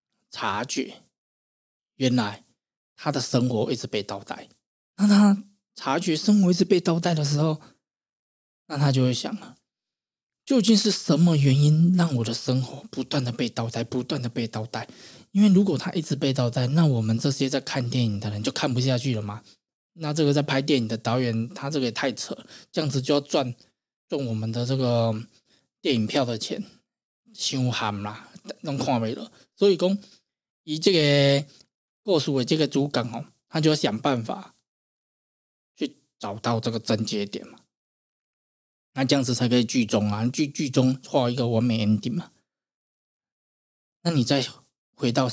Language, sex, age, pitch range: Chinese, male, 20-39, 115-150 Hz